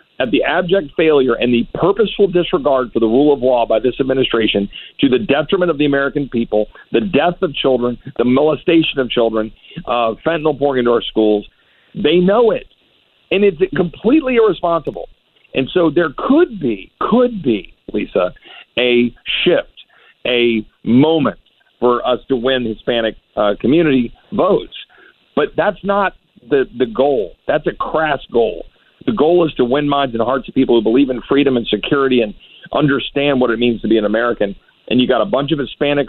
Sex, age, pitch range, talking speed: male, 50-69, 115-140 Hz, 175 wpm